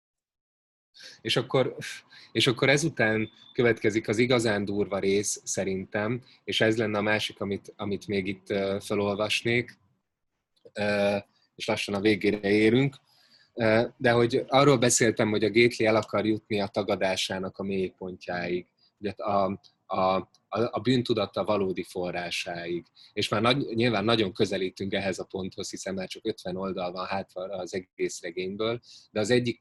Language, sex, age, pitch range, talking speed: Hungarian, male, 20-39, 95-115 Hz, 140 wpm